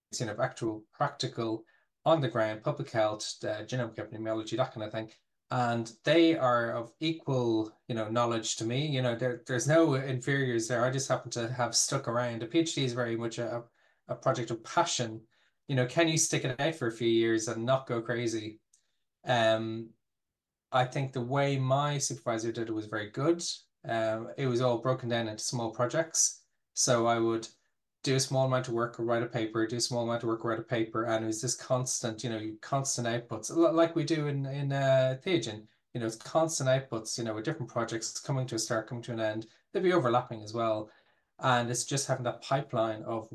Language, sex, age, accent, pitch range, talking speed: English, male, 20-39, Irish, 115-135 Hz, 215 wpm